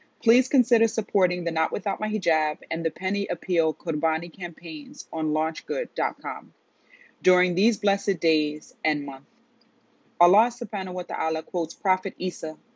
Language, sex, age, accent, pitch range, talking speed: English, female, 30-49, American, 160-195 Hz, 135 wpm